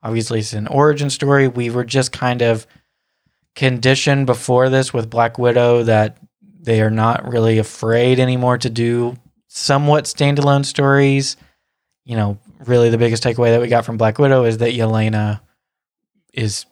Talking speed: 160 wpm